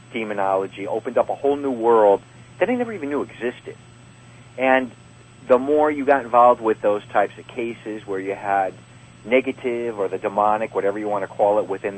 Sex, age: male, 40-59